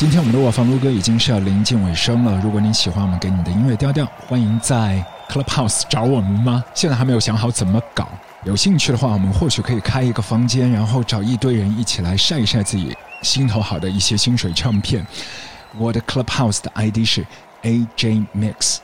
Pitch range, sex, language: 100-130 Hz, male, Chinese